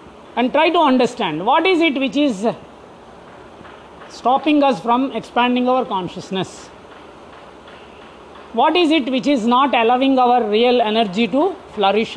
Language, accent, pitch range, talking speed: English, Indian, 220-290 Hz, 135 wpm